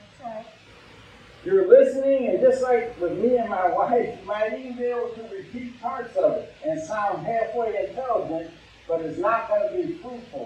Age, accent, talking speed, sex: 50-69, American, 180 wpm, male